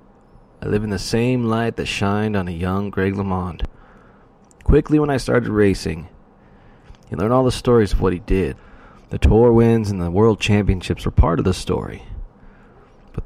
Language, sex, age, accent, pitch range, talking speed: English, male, 30-49, American, 90-115 Hz, 180 wpm